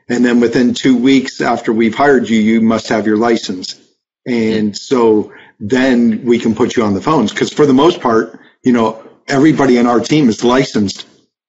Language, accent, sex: English, American, male